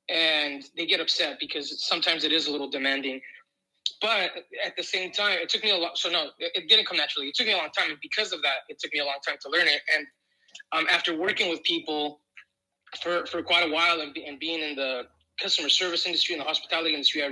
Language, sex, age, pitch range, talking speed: English, male, 20-39, 150-190 Hz, 245 wpm